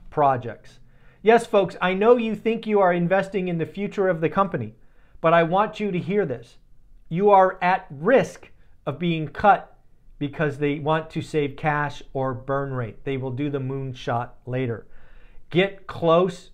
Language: English